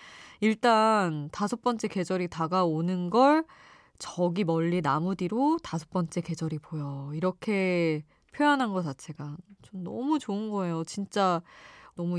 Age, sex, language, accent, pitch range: 20-39, female, Korean, native, 165-220 Hz